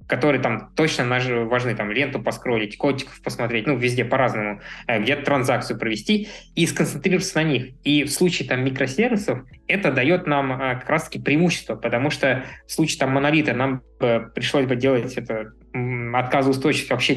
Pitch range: 125-155 Hz